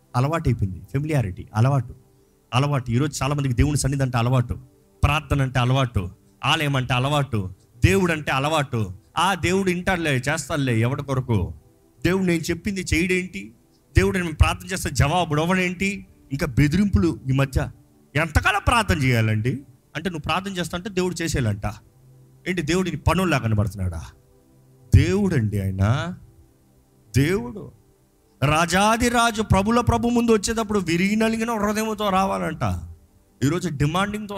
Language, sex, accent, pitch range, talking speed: Telugu, male, native, 120-180 Hz, 120 wpm